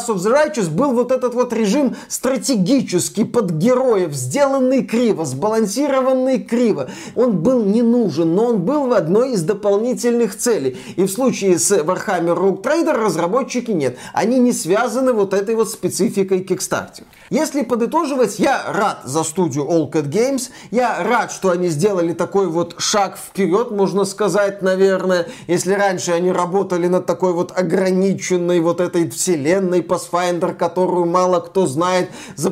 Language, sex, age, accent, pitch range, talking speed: Russian, male, 30-49, native, 175-235 Hz, 150 wpm